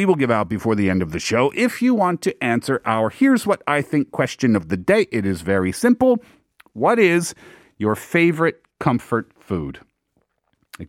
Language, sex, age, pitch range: Korean, male, 40-59, 110-175 Hz